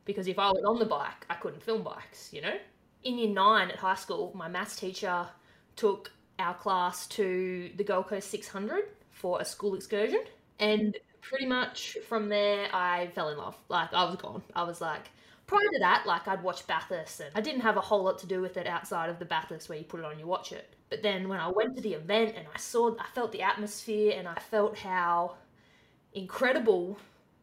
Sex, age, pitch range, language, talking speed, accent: female, 20-39, 185-220 Hz, English, 220 wpm, Australian